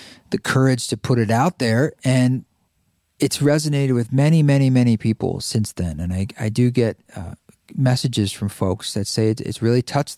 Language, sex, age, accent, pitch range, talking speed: English, male, 40-59, American, 105-130 Hz, 185 wpm